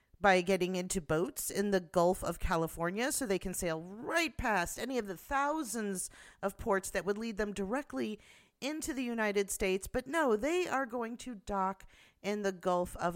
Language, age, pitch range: English, 40-59, 180-255 Hz